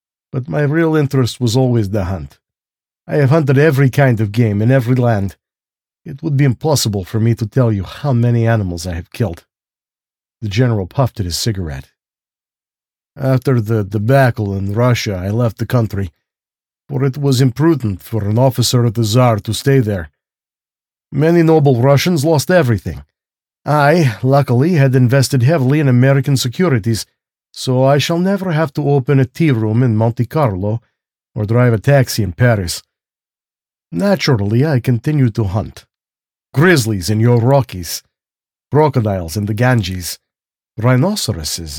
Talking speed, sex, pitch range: 150 wpm, male, 105-140 Hz